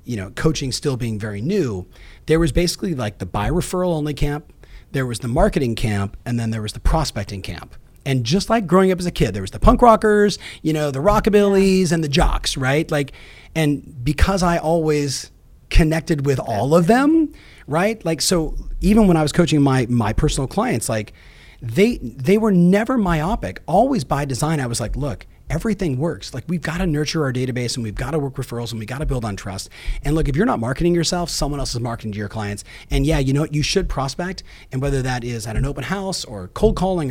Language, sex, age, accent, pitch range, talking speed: English, male, 30-49, American, 120-170 Hz, 225 wpm